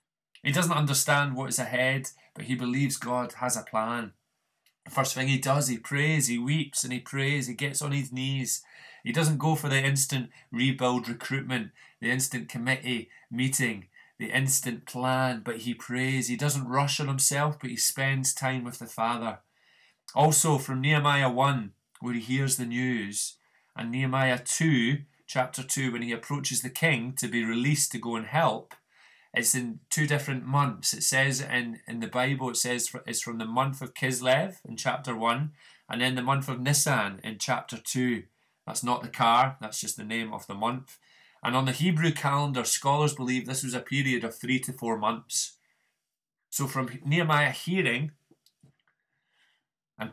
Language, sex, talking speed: English, male, 180 wpm